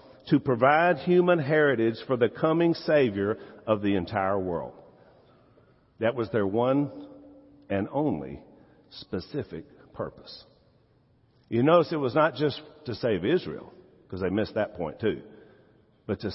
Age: 50-69